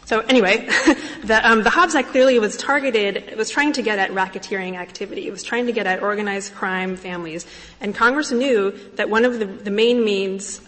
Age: 20-39